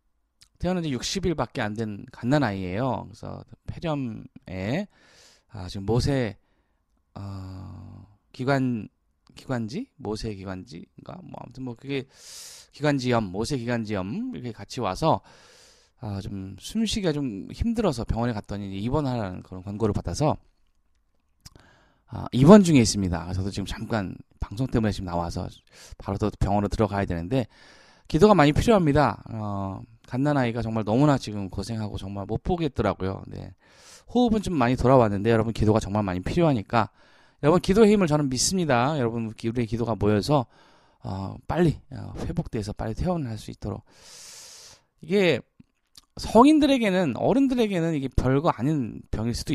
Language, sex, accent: Korean, male, native